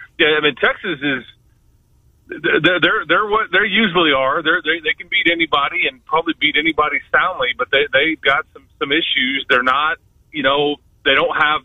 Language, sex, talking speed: English, male, 190 wpm